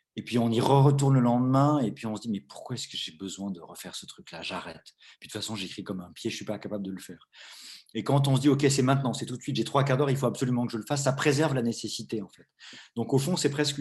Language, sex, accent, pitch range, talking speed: French, male, French, 105-140 Hz, 315 wpm